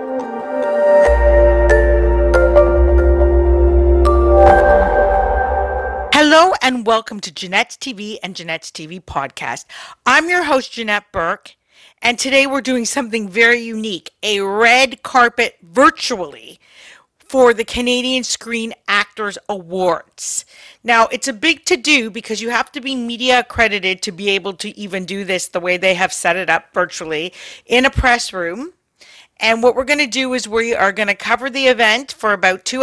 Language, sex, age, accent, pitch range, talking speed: English, female, 50-69, American, 185-245 Hz, 145 wpm